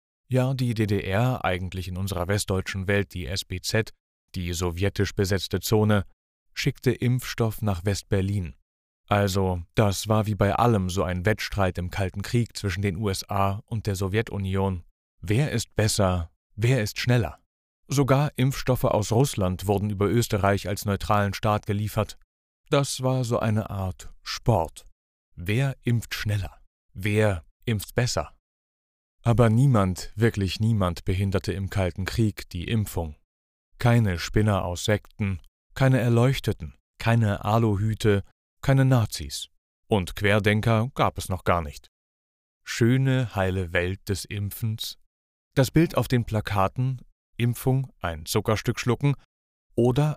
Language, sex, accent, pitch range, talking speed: German, male, German, 90-115 Hz, 130 wpm